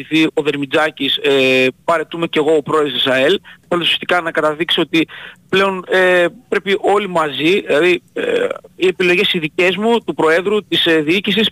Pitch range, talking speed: 160-215 Hz, 160 wpm